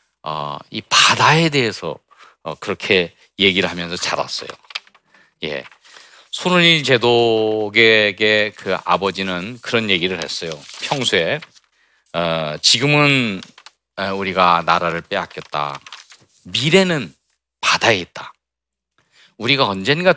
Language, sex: Korean, male